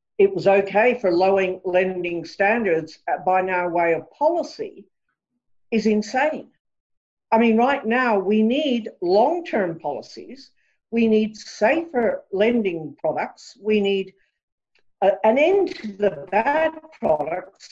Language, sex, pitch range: English, female, 205-270 Hz